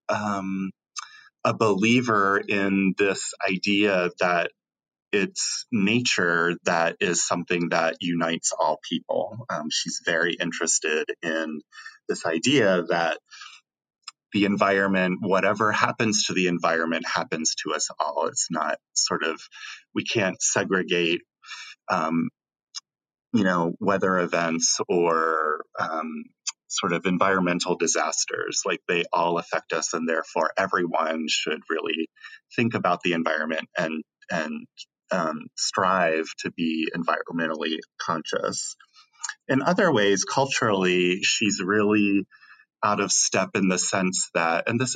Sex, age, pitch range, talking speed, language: male, 30-49, 85-105 Hz, 120 wpm, English